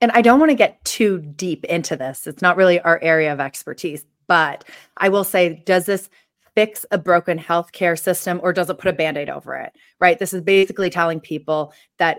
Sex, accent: female, American